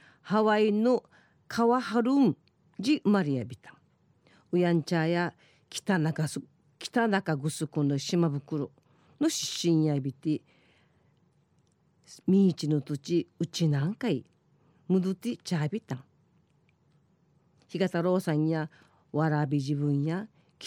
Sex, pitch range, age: female, 150-205 Hz, 50-69